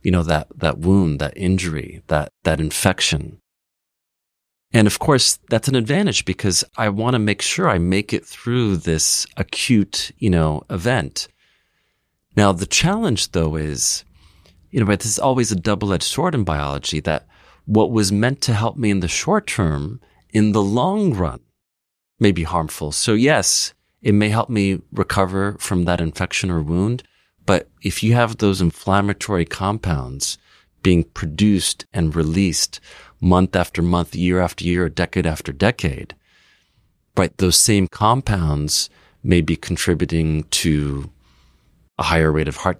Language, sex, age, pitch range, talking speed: English, male, 30-49, 80-100 Hz, 155 wpm